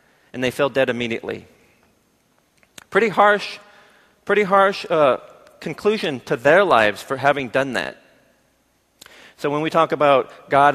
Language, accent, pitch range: Korean, American, 135-190 Hz